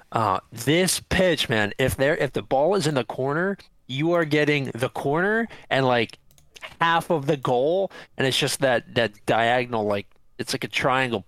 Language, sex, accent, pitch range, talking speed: English, male, American, 115-150 Hz, 185 wpm